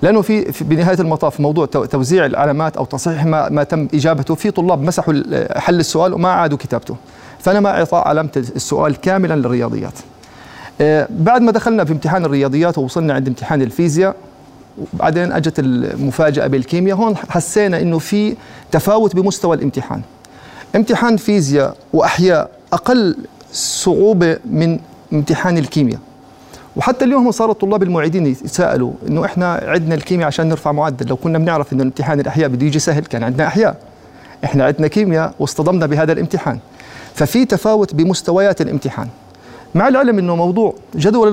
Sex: male